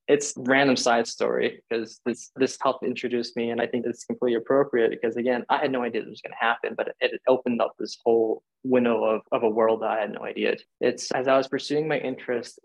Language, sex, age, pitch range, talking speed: English, male, 20-39, 120-145 Hz, 245 wpm